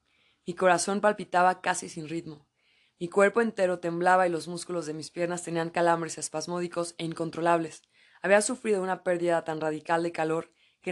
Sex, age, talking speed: female, 20-39, 165 wpm